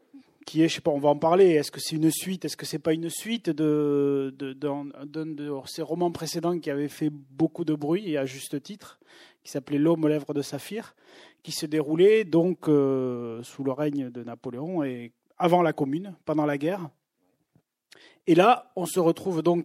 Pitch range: 145-180 Hz